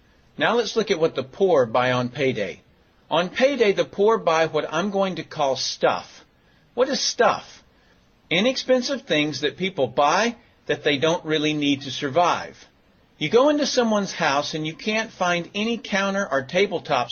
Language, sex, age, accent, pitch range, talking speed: English, male, 50-69, American, 145-220 Hz, 170 wpm